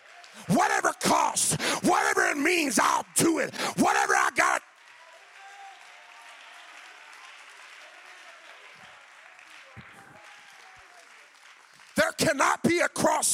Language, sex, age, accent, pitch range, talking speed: English, male, 50-69, American, 235-295 Hz, 70 wpm